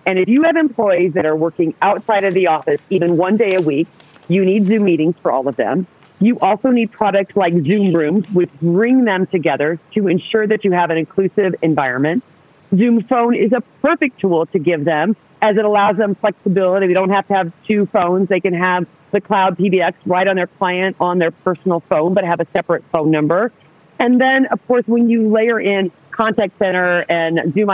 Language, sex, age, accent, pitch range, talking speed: English, female, 40-59, American, 170-215 Hz, 210 wpm